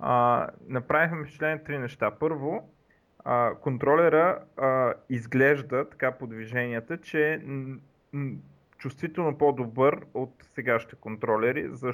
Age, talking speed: 30-49, 110 wpm